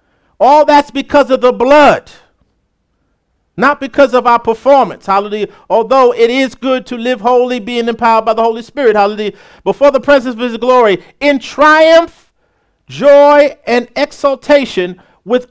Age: 50-69